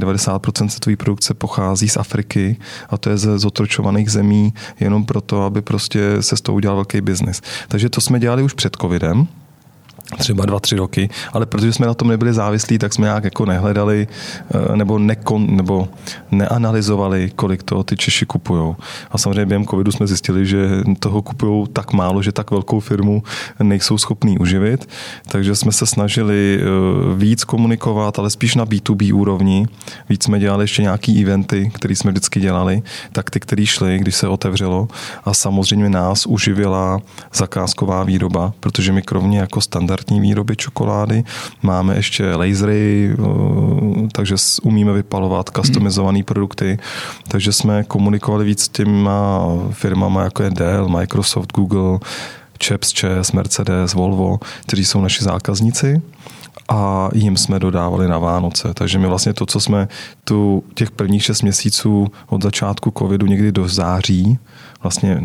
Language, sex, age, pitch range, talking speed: Czech, male, 20-39, 95-110 Hz, 150 wpm